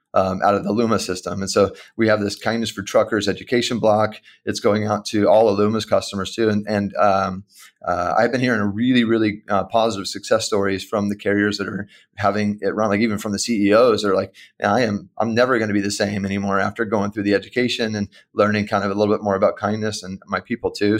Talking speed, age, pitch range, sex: 230 wpm, 30-49, 100-110 Hz, male